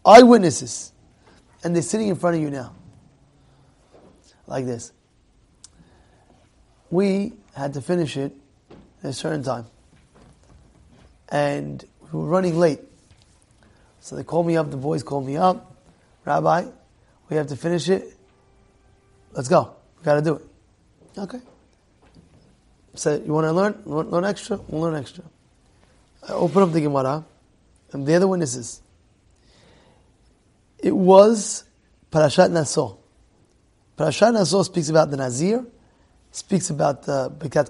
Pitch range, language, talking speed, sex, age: 130-190 Hz, English, 125 wpm, male, 30-49